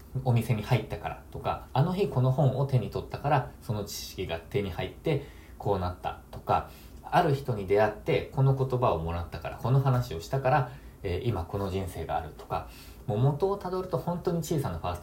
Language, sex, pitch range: Japanese, male, 95-135 Hz